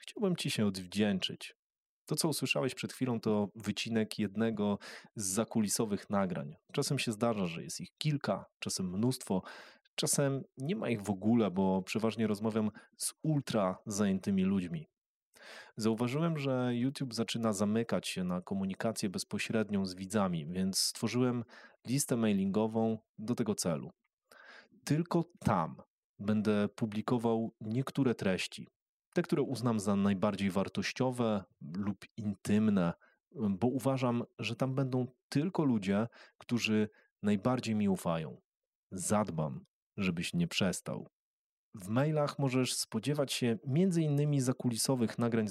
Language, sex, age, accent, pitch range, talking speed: Polish, male, 30-49, native, 105-140 Hz, 120 wpm